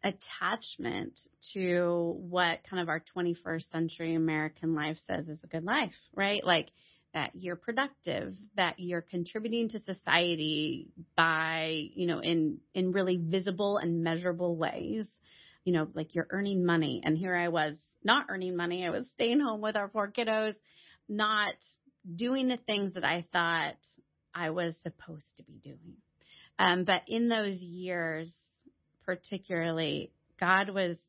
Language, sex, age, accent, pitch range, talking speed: English, female, 30-49, American, 165-200 Hz, 150 wpm